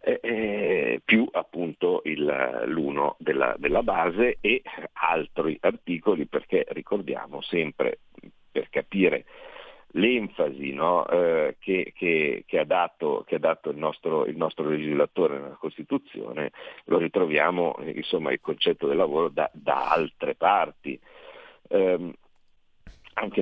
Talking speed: 120 wpm